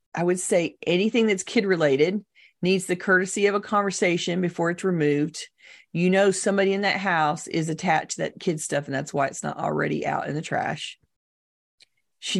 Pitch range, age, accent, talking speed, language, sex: 155-195 Hz, 40-59, American, 190 wpm, English, female